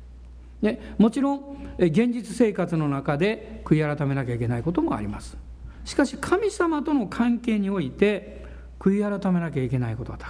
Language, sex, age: Japanese, male, 60-79